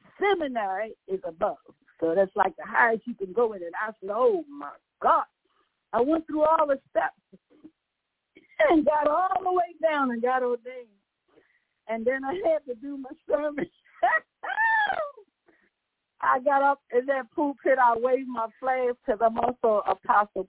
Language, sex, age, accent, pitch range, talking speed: English, female, 50-69, American, 220-315 Hz, 165 wpm